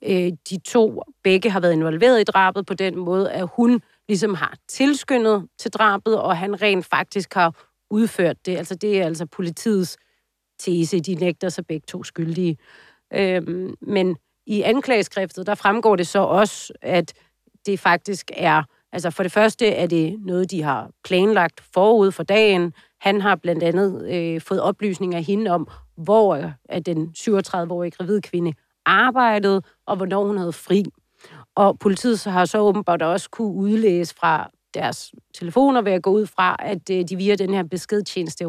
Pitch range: 175-210 Hz